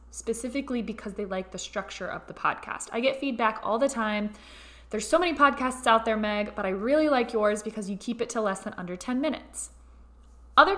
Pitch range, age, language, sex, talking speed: 210-260 Hz, 20-39, English, female, 210 wpm